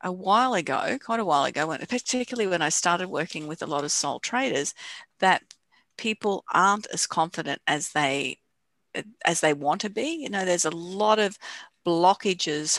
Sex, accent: female, Australian